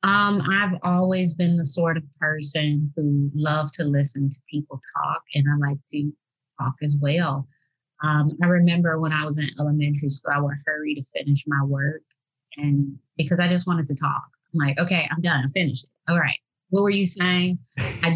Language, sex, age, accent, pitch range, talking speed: English, female, 30-49, American, 140-170 Hz, 200 wpm